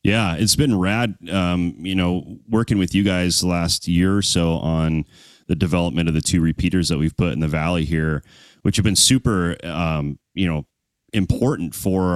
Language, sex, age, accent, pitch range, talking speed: English, male, 30-49, American, 85-95 Hz, 190 wpm